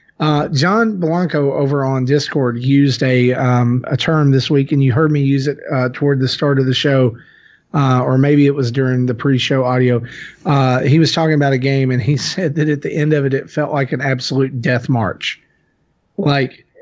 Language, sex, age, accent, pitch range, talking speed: English, male, 40-59, American, 135-155 Hz, 210 wpm